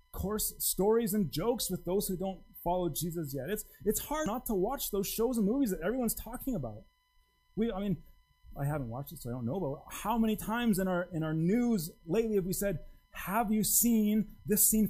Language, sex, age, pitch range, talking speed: English, male, 30-49, 150-250 Hz, 220 wpm